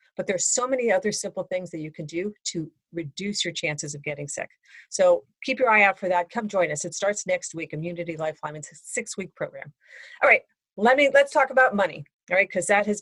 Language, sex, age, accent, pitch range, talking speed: English, female, 40-59, American, 160-200 Hz, 235 wpm